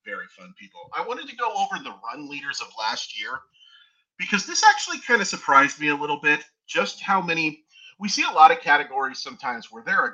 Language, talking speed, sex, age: English, 220 wpm, male, 30-49